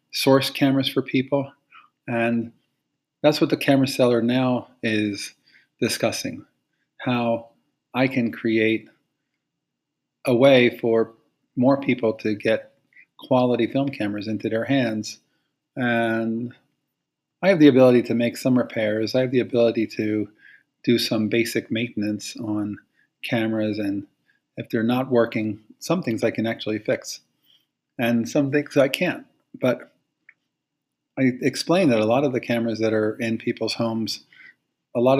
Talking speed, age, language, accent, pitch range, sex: 140 wpm, 40-59, English, American, 110-135 Hz, male